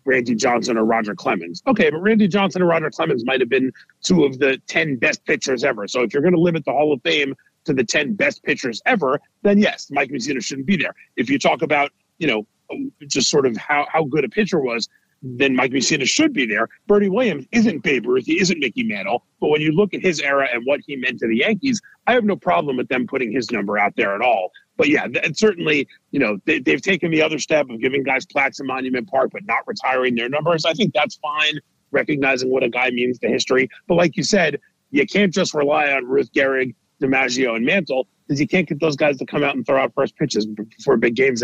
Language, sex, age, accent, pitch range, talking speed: English, male, 40-59, American, 135-195 Hz, 245 wpm